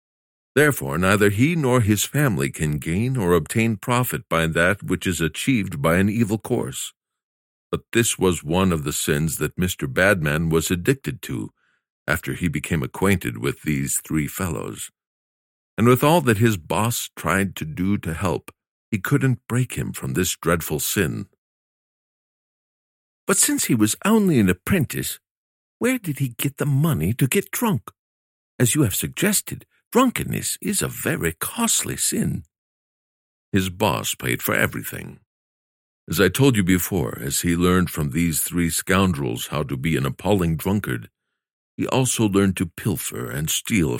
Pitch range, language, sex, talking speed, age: 80-120 Hz, English, male, 160 wpm, 60-79